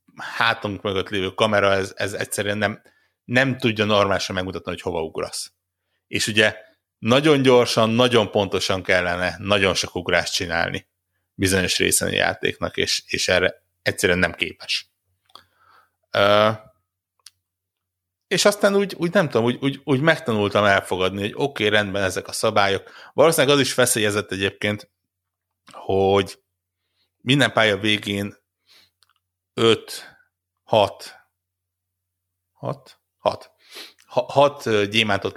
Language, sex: Hungarian, male